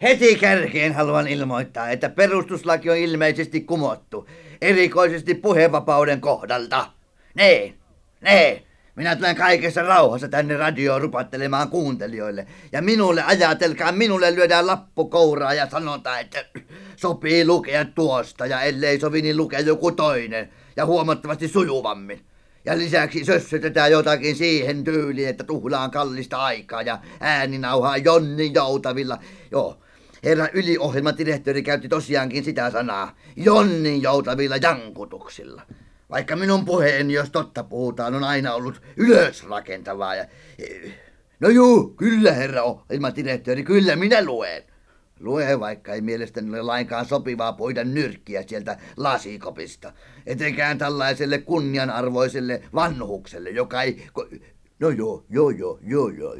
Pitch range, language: 135-170 Hz, Finnish